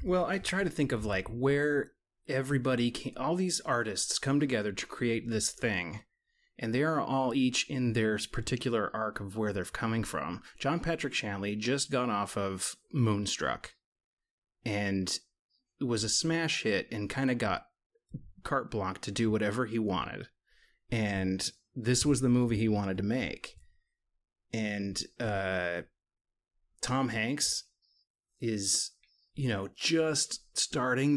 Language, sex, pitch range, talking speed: English, male, 105-145 Hz, 145 wpm